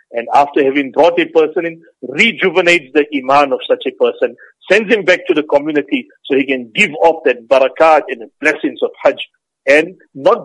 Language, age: English, 50-69